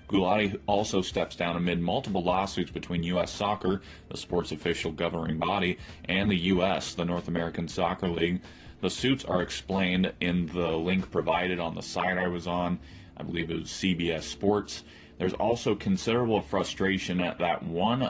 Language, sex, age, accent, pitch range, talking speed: English, male, 30-49, American, 85-95 Hz, 165 wpm